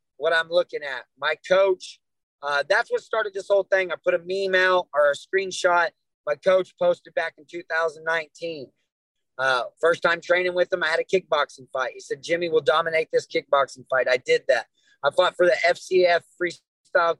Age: 30-49